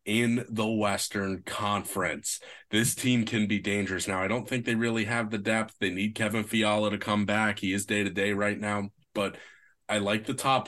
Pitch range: 100-130 Hz